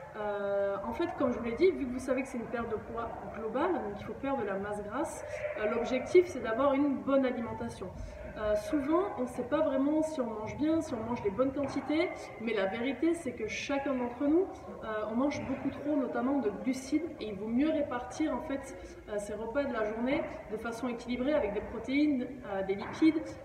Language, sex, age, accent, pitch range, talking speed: French, female, 20-39, French, 225-295 Hz, 230 wpm